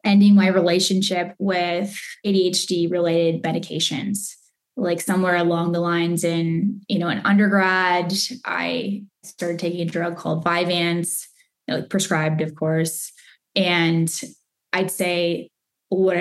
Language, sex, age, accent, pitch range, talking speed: English, female, 10-29, American, 165-190 Hz, 115 wpm